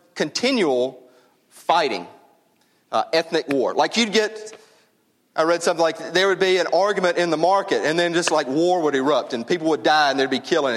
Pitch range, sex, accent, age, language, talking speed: 145-185 Hz, male, American, 40-59, English, 195 wpm